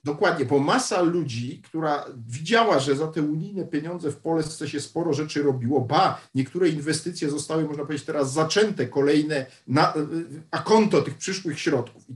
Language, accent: Polish, native